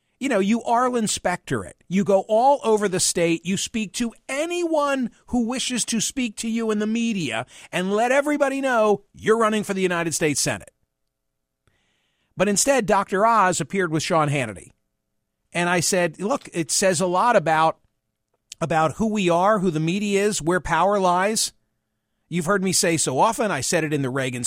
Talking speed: 185 wpm